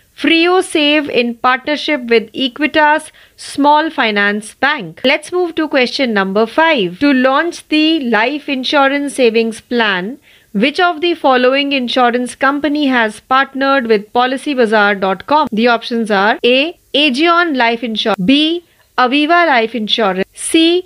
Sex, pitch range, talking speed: female, 225-300 Hz, 125 wpm